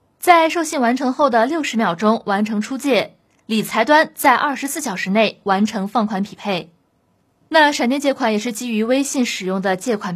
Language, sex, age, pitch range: Chinese, female, 20-39, 205-280 Hz